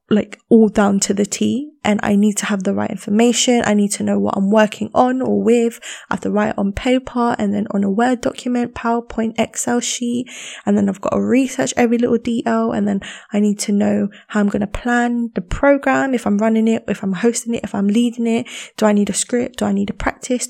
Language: English